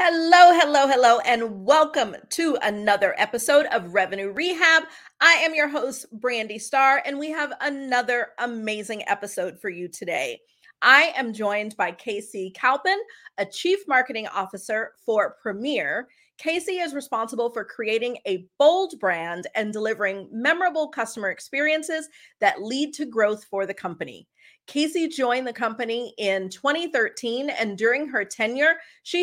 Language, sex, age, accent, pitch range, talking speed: English, female, 40-59, American, 210-305 Hz, 140 wpm